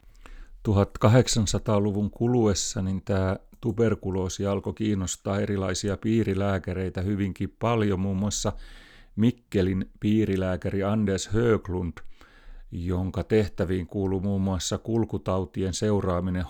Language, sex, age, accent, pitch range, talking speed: Finnish, male, 30-49, native, 95-110 Hz, 85 wpm